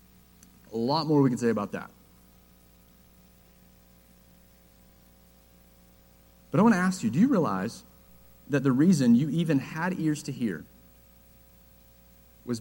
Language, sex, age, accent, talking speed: English, male, 40-59, American, 130 wpm